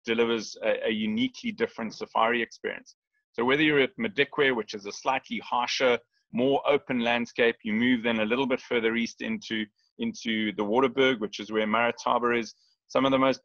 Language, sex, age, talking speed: English, male, 30-49, 185 wpm